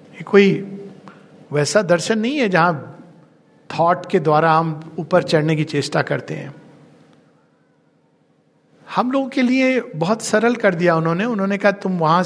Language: Hindi